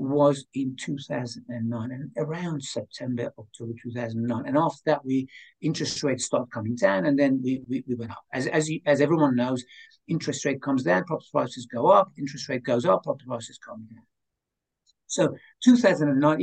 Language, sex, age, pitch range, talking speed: English, male, 60-79, 125-155 Hz, 175 wpm